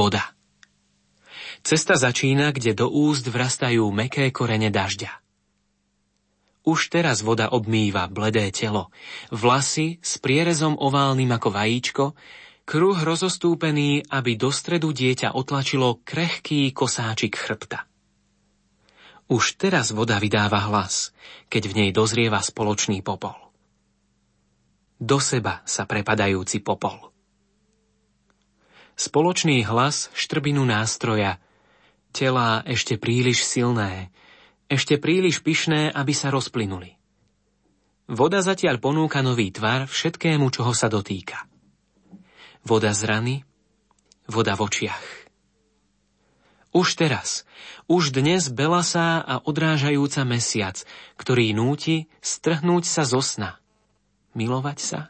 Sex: male